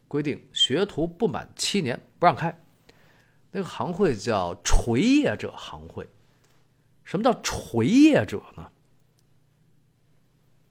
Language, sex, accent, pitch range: Chinese, male, native, 120-175 Hz